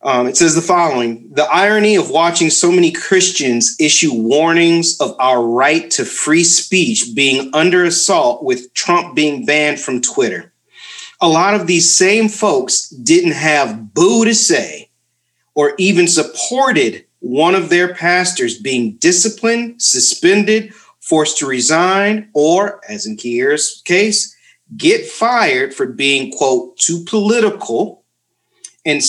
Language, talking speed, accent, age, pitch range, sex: English, 135 wpm, American, 40-59, 150-220 Hz, male